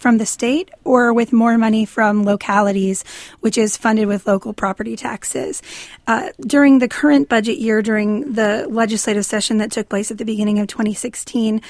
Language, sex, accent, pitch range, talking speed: English, female, American, 215-250 Hz, 175 wpm